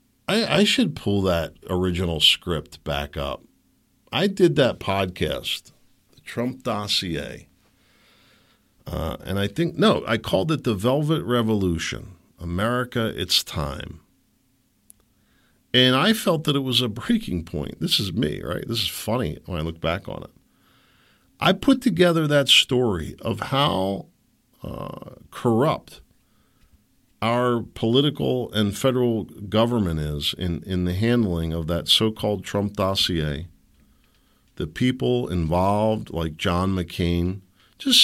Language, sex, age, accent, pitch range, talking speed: English, male, 50-69, American, 85-115 Hz, 130 wpm